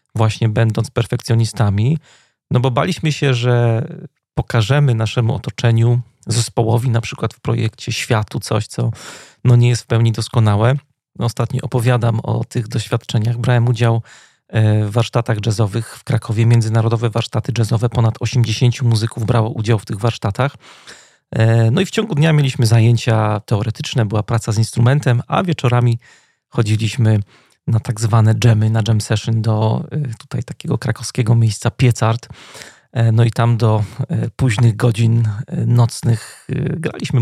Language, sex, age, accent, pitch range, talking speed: Polish, male, 40-59, native, 115-130 Hz, 135 wpm